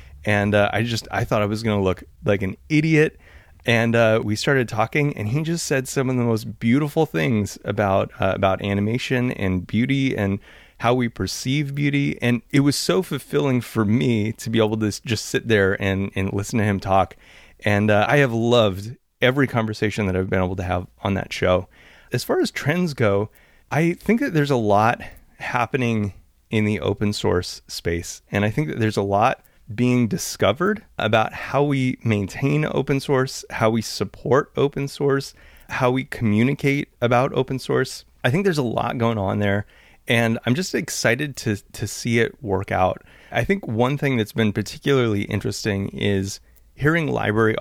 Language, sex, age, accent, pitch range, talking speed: English, male, 30-49, American, 100-130 Hz, 185 wpm